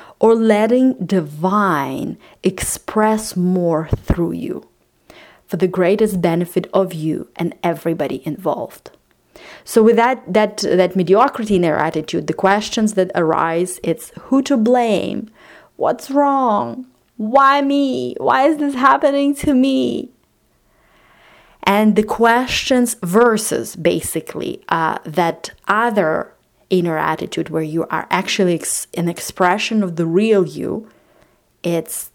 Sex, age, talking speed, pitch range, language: female, 30-49, 120 wpm, 175-225 Hz, English